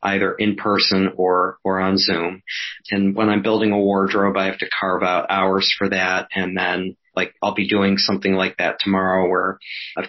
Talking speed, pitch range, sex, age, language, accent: 195 wpm, 95-105 Hz, male, 40-59, English, American